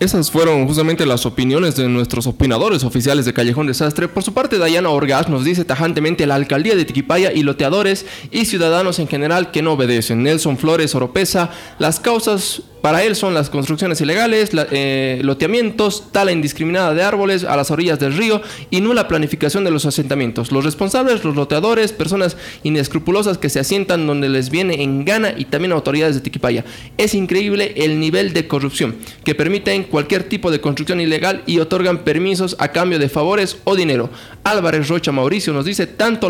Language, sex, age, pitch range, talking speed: Spanish, male, 20-39, 145-195 Hz, 180 wpm